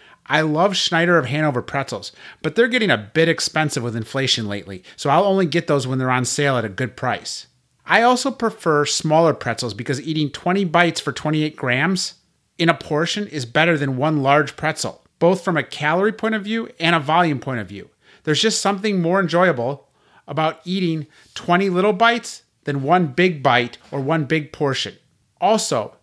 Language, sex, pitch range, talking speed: English, male, 140-190 Hz, 185 wpm